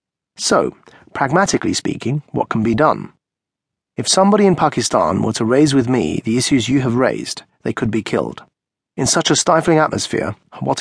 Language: English